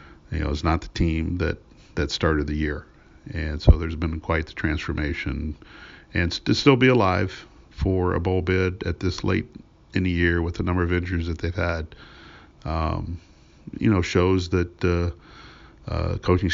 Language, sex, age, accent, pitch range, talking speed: English, male, 40-59, American, 80-95 Hz, 180 wpm